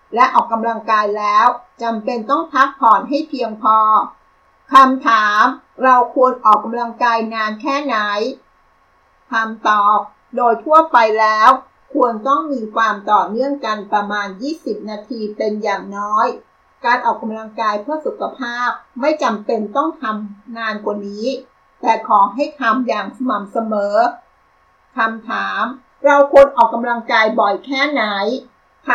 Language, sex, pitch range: Thai, female, 215-265 Hz